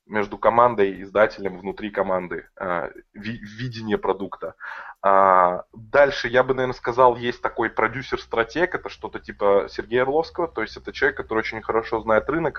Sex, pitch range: male, 100-125 Hz